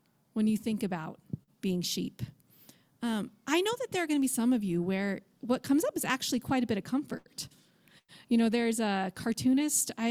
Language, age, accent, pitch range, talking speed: English, 30-49, American, 205-260 Hz, 200 wpm